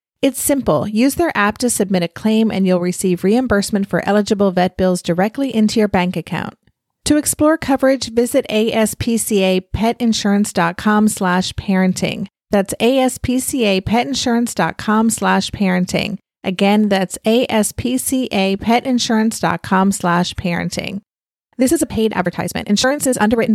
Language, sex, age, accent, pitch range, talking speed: English, female, 30-49, American, 185-240 Hz, 115 wpm